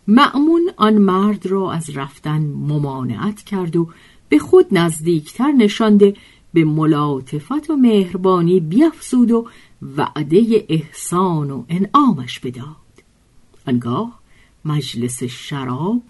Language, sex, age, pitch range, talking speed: Persian, female, 50-69, 145-230 Hz, 100 wpm